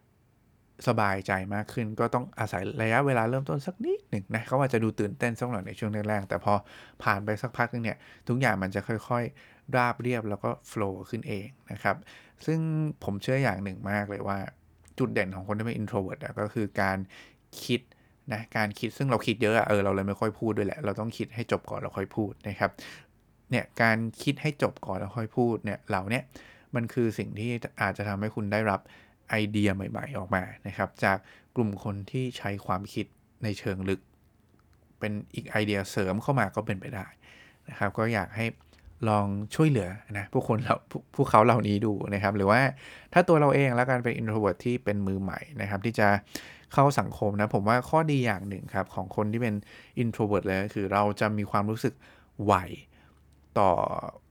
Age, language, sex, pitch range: 20-39, English, male, 100-120 Hz